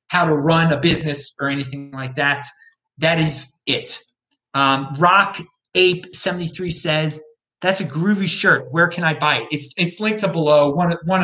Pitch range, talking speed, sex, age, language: 135-175 Hz, 180 wpm, male, 30-49, English